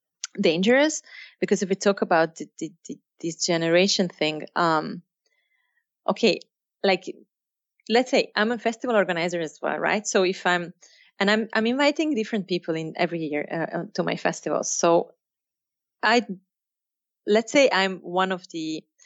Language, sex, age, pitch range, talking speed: English, female, 30-49, 170-220 Hz, 140 wpm